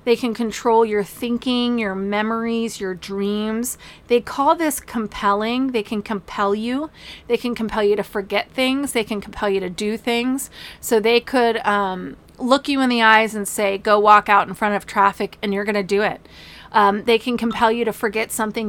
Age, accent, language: 30-49, American, English